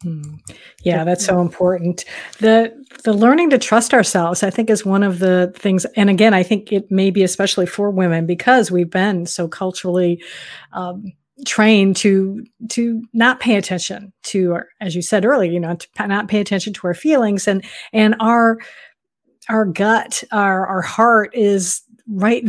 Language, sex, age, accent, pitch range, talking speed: English, female, 50-69, American, 180-225 Hz, 170 wpm